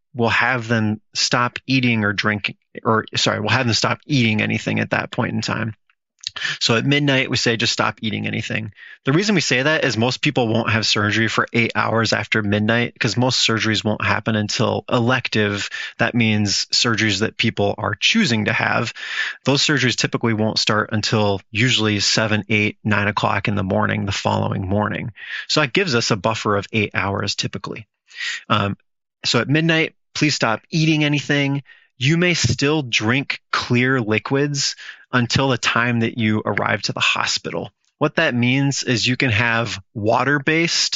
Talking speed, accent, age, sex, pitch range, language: 175 wpm, American, 30-49, male, 110-135 Hz, English